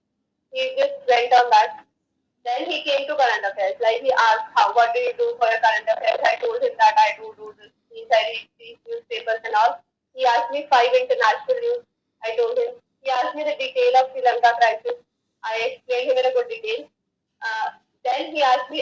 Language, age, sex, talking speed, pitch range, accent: Hindi, 20-39, female, 190 wpm, 245-360 Hz, native